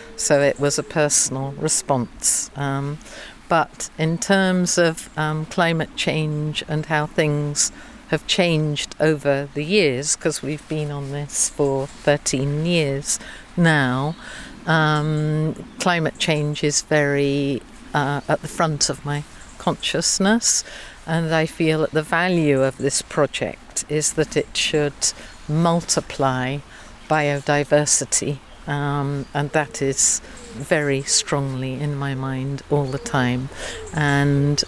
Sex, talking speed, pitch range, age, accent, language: female, 120 wpm, 140-160 Hz, 50-69, British, English